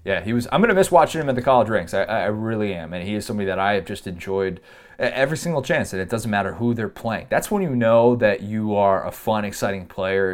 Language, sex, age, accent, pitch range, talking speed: English, male, 20-39, American, 95-120 Hz, 275 wpm